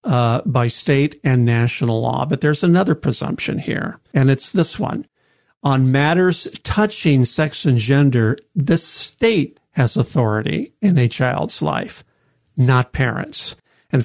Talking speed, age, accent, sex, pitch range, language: 135 wpm, 50-69, American, male, 125-160 Hz, English